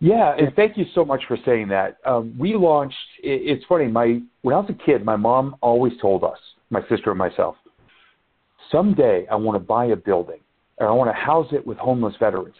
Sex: male